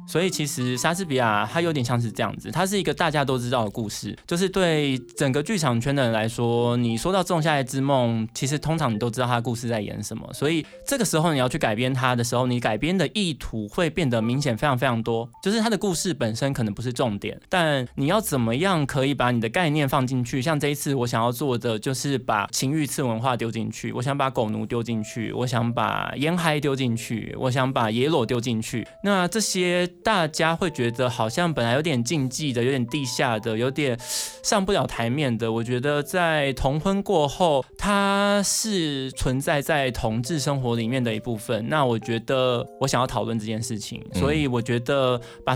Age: 20-39